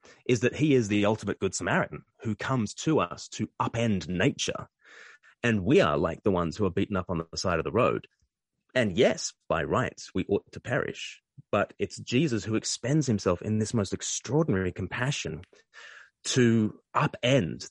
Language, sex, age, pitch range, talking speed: English, male, 30-49, 95-120 Hz, 175 wpm